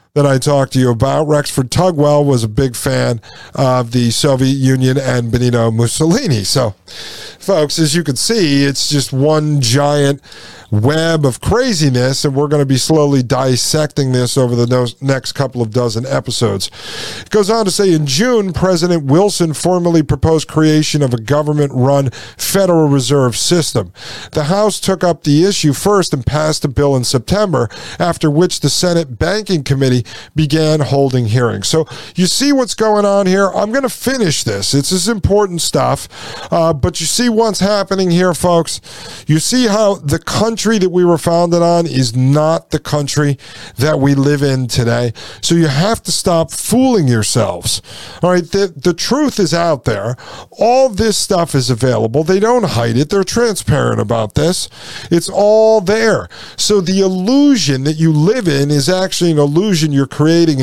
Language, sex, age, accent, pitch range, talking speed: English, male, 50-69, American, 130-185 Hz, 170 wpm